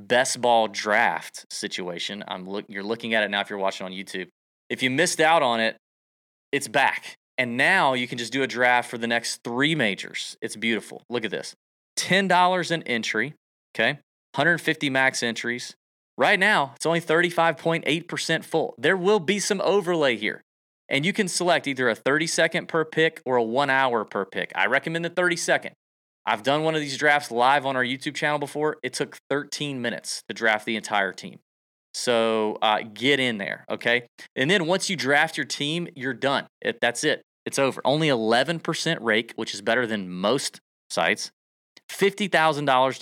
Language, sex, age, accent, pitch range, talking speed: English, male, 30-49, American, 110-155 Hz, 180 wpm